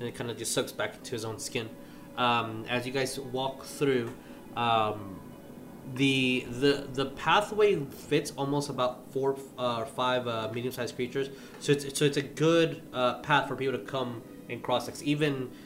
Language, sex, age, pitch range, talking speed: English, male, 20-39, 115-135 Hz, 180 wpm